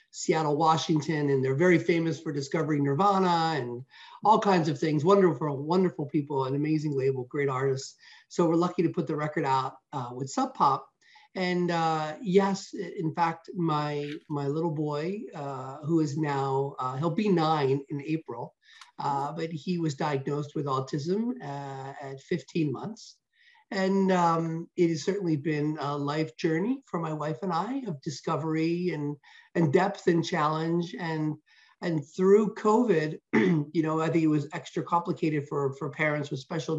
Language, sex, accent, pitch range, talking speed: English, male, American, 145-180 Hz, 165 wpm